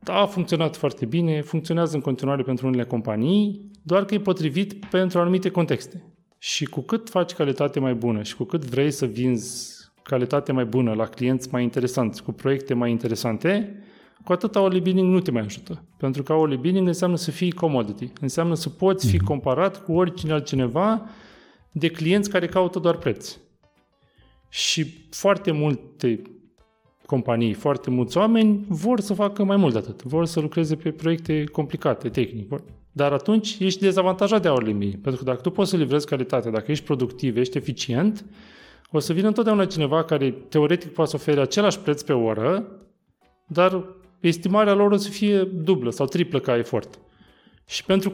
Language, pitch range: Romanian, 135-190 Hz